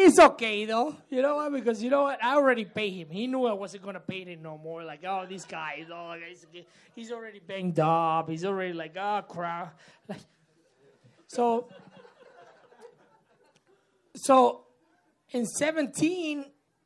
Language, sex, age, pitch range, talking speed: English, male, 30-49, 180-255 Hz, 150 wpm